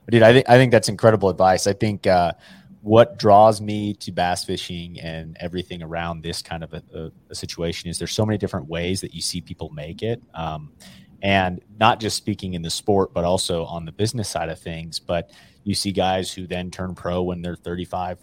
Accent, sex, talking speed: American, male, 220 wpm